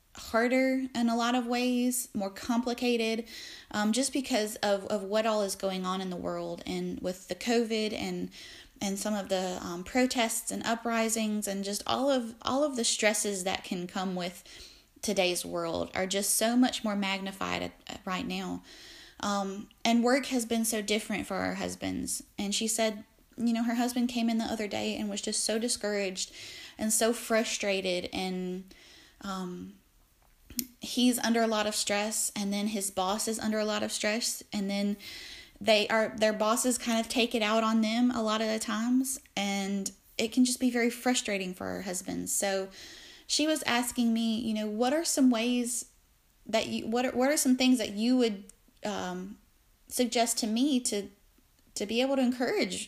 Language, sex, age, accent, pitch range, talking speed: English, female, 20-39, American, 200-245 Hz, 185 wpm